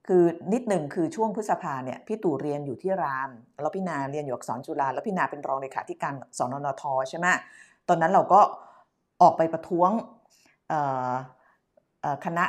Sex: female